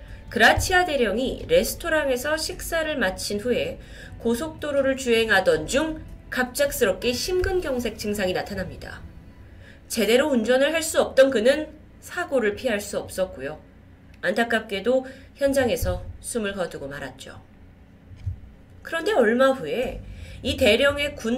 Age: 20-39